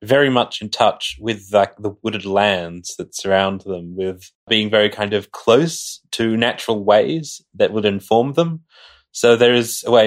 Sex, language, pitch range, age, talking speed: male, English, 100-130 Hz, 20-39, 180 wpm